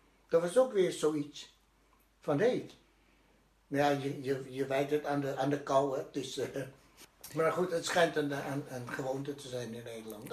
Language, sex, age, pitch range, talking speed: Dutch, male, 60-79, 130-155 Hz, 190 wpm